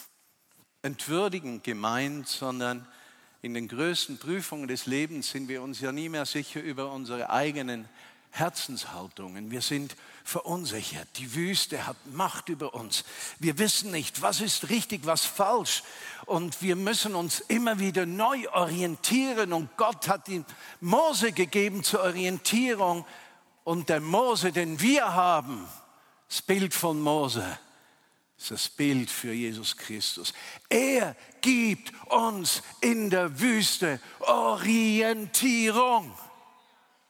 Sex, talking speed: male, 125 wpm